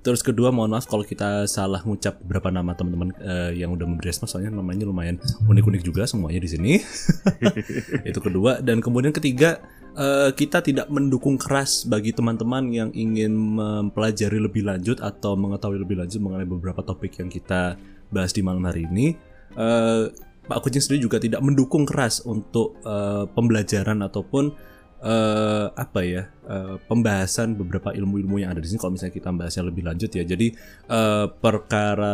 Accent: Indonesian